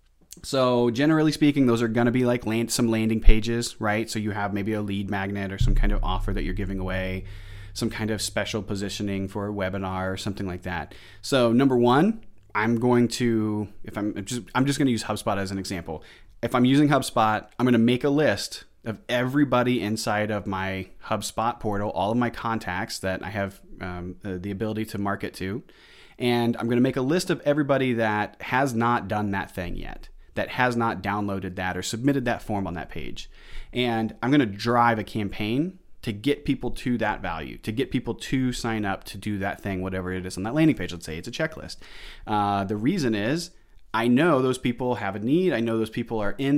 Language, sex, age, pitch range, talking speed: English, male, 30-49, 100-125 Hz, 215 wpm